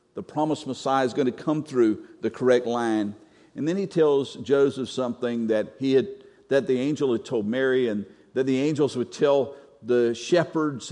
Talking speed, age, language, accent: 185 wpm, 50-69, English, American